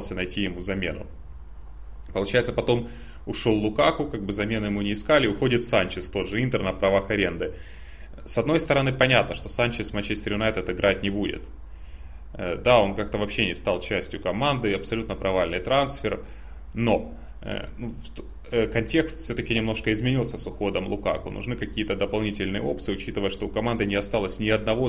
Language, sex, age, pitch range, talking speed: Russian, male, 20-39, 95-120 Hz, 150 wpm